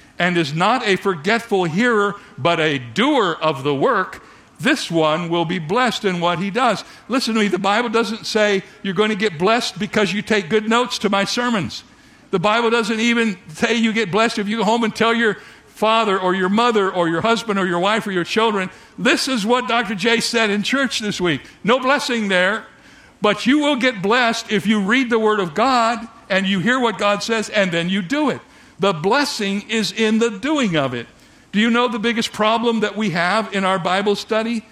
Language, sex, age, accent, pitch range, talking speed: English, male, 60-79, American, 195-235 Hz, 220 wpm